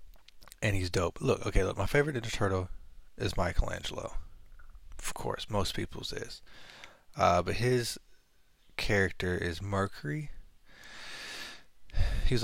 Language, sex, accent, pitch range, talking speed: English, male, American, 85-105 Hz, 115 wpm